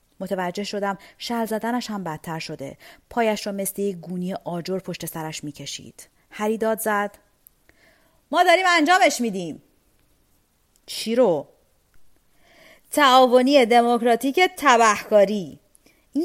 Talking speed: 105 wpm